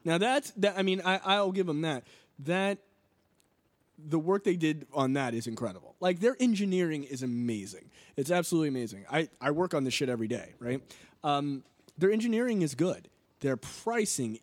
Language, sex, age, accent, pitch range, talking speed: English, male, 20-39, American, 125-160 Hz, 180 wpm